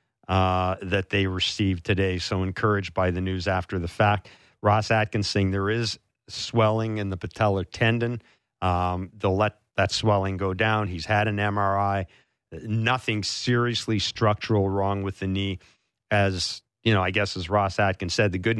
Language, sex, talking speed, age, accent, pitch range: English, male, 170 wpm, 50-69, American, 100-120 Hz